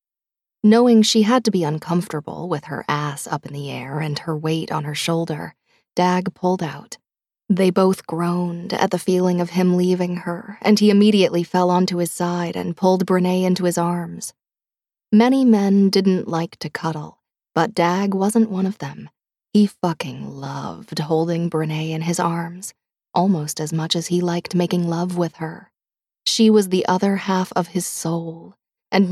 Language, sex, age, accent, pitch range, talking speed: English, female, 20-39, American, 170-190 Hz, 175 wpm